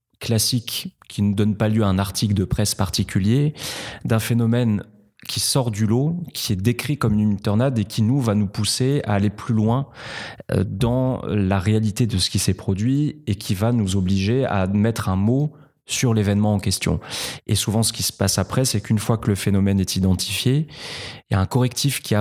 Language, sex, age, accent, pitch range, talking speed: French, male, 20-39, French, 100-125 Hz, 210 wpm